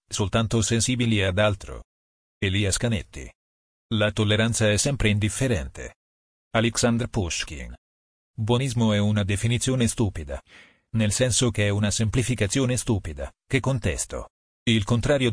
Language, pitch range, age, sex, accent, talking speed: Italian, 90-120 Hz, 40-59, male, native, 115 wpm